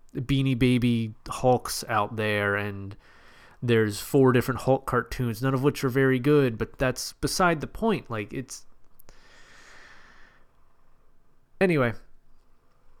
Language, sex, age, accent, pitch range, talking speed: English, male, 30-49, American, 115-155 Hz, 115 wpm